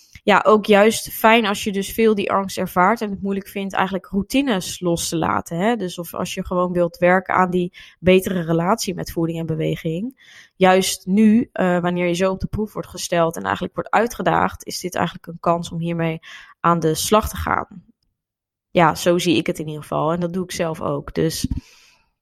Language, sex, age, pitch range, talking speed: Dutch, female, 20-39, 170-195 Hz, 210 wpm